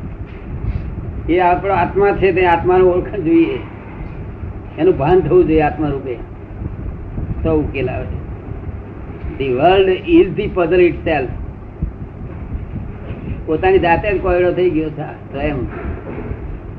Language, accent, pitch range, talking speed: Gujarati, native, 105-175 Hz, 70 wpm